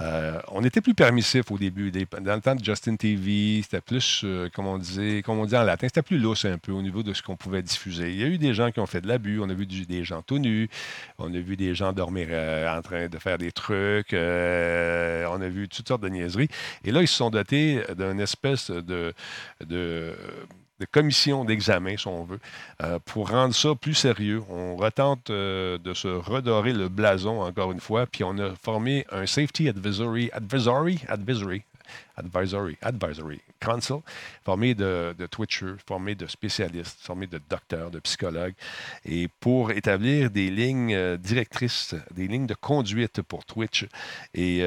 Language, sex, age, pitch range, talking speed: French, male, 50-69, 90-120 Hz, 200 wpm